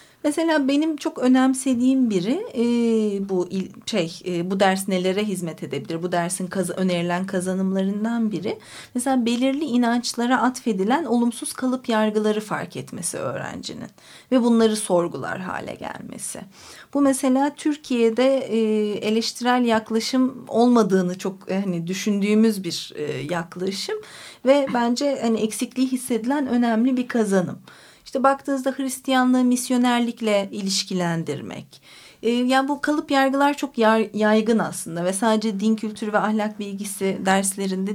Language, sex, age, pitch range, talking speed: Turkish, female, 40-59, 195-255 Hz, 110 wpm